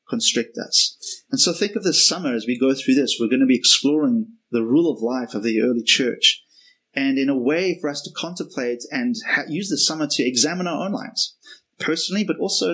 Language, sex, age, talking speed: English, male, 30-49, 220 wpm